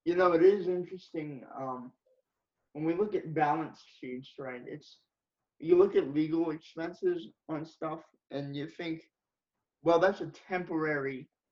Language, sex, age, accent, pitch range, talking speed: English, male, 20-39, American, 150-185 Hz, 145 wpm